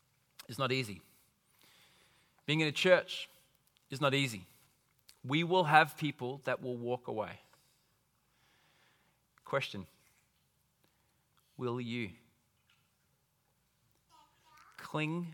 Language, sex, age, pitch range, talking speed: English, male, 30-49, 145-190 Hz, 85 wpm